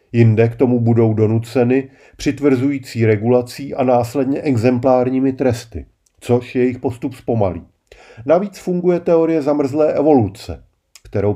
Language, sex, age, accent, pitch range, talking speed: Czech, male, 40-59, native, 110-140 Hz, 110 wpm